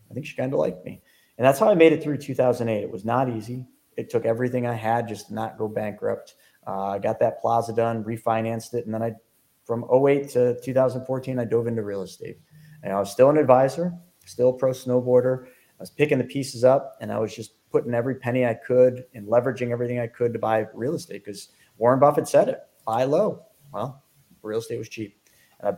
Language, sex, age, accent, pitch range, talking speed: English, male, 30-49, American, 110-125 Hz, 220 wpm